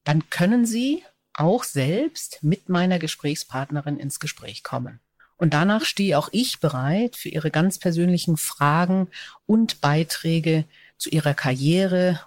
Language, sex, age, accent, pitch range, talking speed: German, female, 50-69, German, 155-195 Hz, 130 wpm